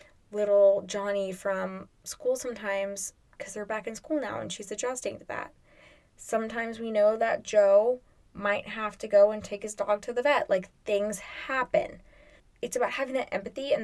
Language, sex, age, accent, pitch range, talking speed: English, female, 10-29, American, 195-260 Hz, 180 wpm